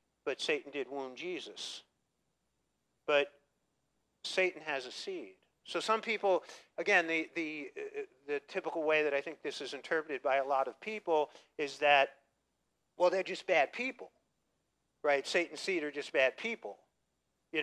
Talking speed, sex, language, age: 155 wpm, male, English, 50-69